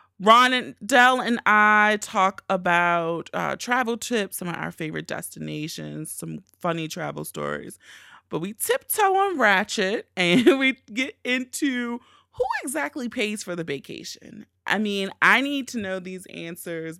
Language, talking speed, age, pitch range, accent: English, 150 wpm, 30-49, 170-230 Hz, American